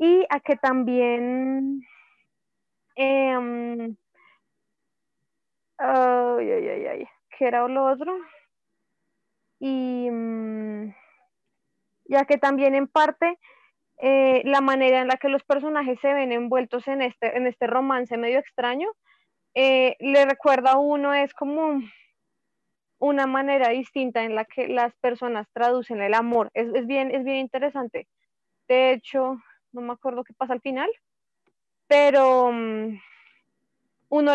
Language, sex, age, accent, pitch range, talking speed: Spanish, female, 20-39, Colombian, 240-275 Hz, 130 wpm